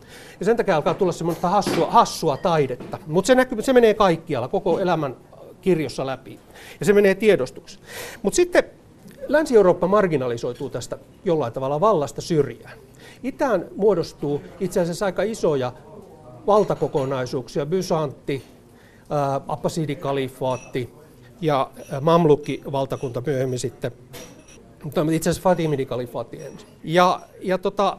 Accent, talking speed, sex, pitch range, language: native, 115 wpm, male, 135-195 Hz, Finnish